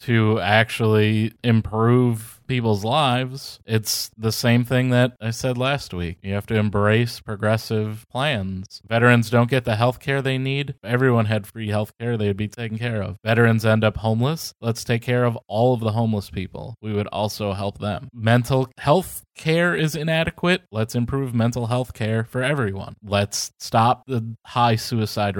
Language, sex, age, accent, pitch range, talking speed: English, male, 20-39, American, 105-125 Hz, 175 wpm